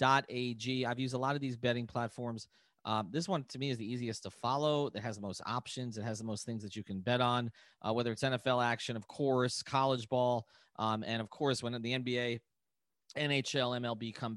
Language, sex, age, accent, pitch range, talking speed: English, male, 30-49, American, 115-145 Hz, 220 wpm